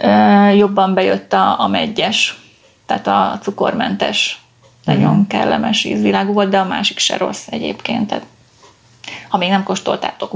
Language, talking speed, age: Hungarian, 120 wpm, 30-49